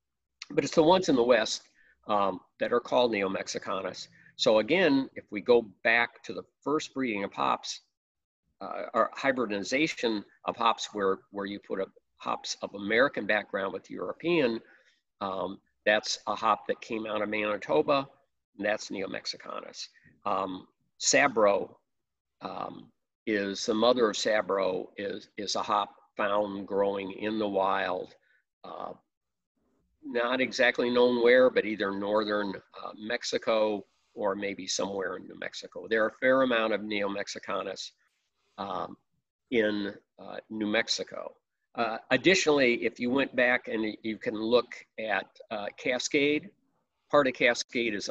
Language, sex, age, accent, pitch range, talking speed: English, male, 50-69, American, 100-125 Hz, 140 wpm